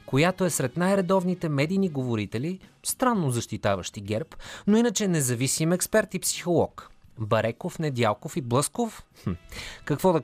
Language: Bulgarian